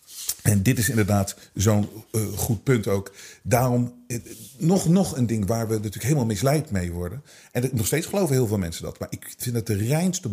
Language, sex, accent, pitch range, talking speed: Dutch, male, Dutch, 120-195 Hz, 215 wpm